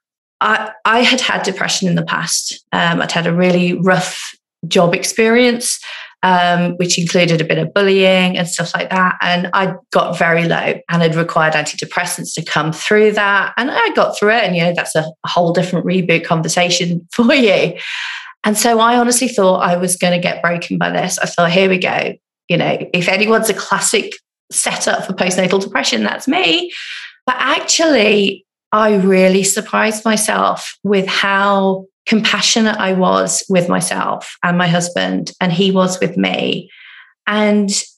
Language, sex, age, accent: English, female, 30-49, British